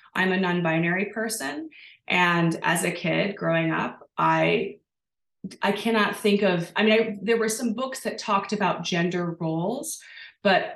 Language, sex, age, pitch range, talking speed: English, female, 20-39, 175-215 Hz, 150 wpm